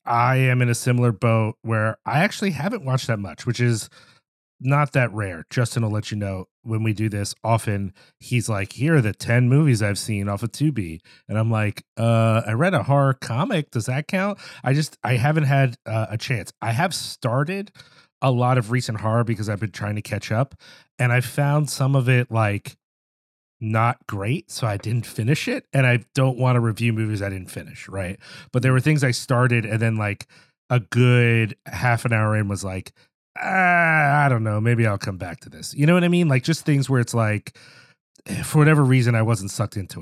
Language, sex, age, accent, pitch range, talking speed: English, male, 30-49, American, 110-135 Hz, 215 wpm